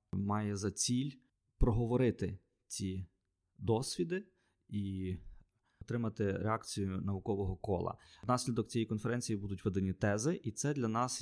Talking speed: 110 wpm